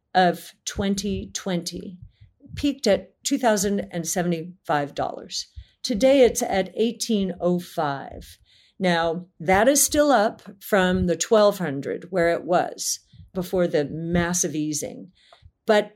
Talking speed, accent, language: 95 wpm, American, English